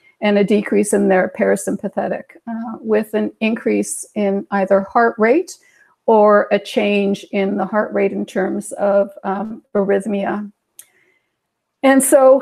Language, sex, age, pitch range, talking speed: English, female, 50-69, 200-230 Hz, 135 wpm